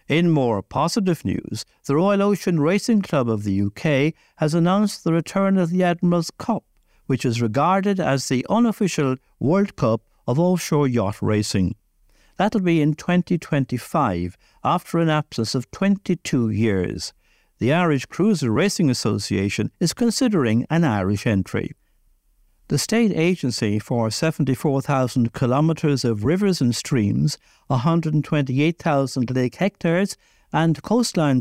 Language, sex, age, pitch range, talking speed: English, male, 60-79, 125-180 Hz, 130 wpm